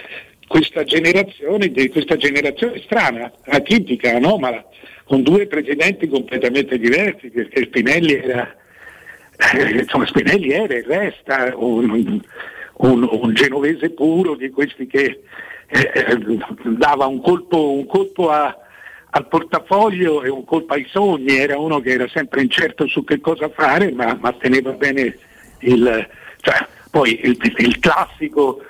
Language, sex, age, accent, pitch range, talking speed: Italian, male, 60-79, native, 130-170 Hz, 135 wpm